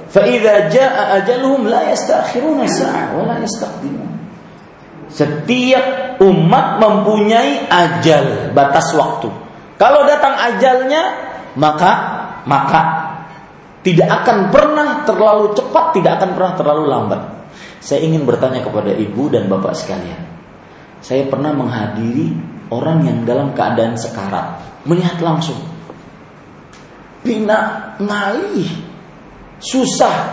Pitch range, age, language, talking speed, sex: 125-195 Hz, 40-59, Malay, 105 wpm, male